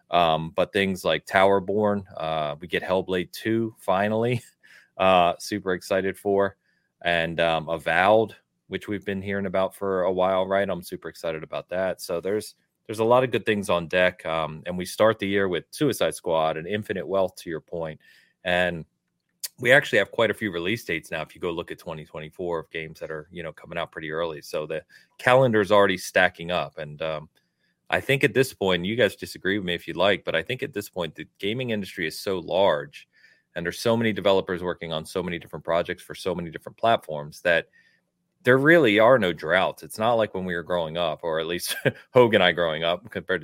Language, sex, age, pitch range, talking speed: English, male, 30-49, 85-105 Hz, 215 wpm